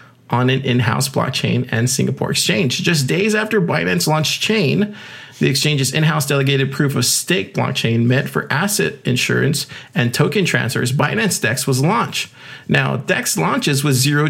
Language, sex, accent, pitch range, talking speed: English, male, American, 130-160 Hz, 155 wpm